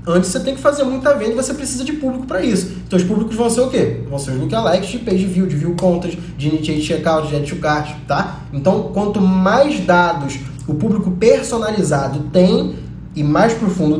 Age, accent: 20-39, Brazilian